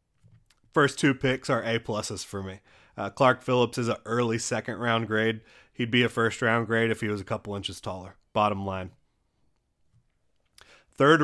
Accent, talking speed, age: American, 160 wpm, 30-49